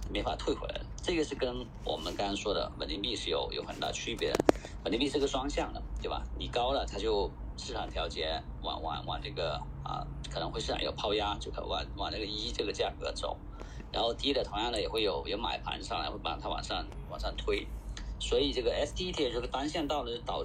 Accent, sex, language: native, male, Chinese